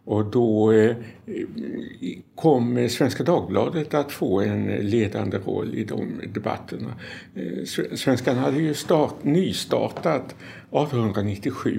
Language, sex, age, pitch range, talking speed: Swedish, male, 60-79, 105-135 Hz, 95 wpm